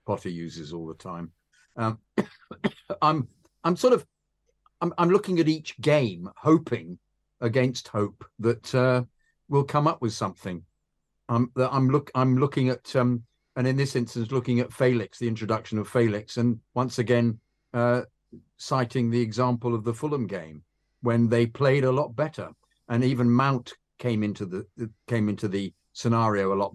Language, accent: English, British